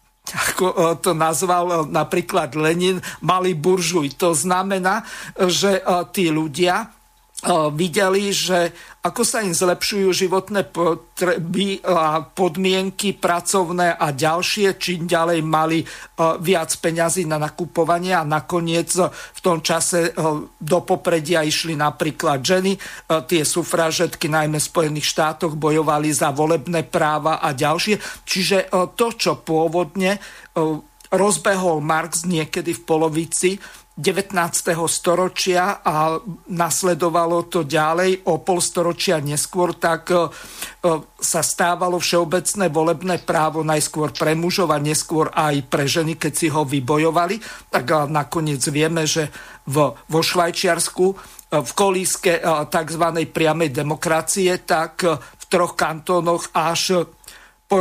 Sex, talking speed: male, 110 wpm